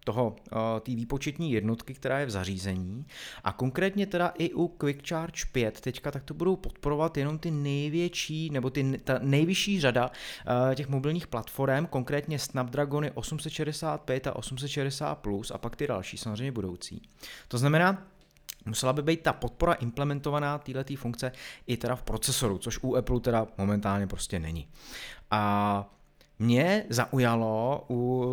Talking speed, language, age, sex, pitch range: 145 wpm, Czech, 30-49, male, 115-150 Hz